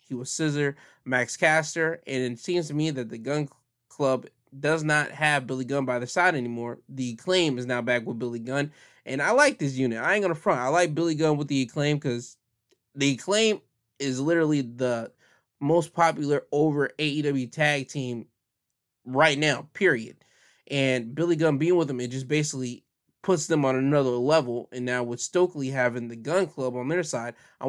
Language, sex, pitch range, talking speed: English, male, 125-160 Hz, 190 wpm